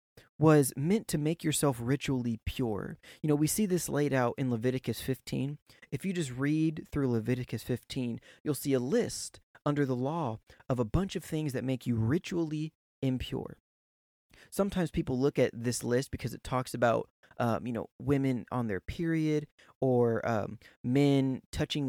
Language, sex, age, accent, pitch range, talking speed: English, male, 20-39, American, 120-150 Hz, 170 wpm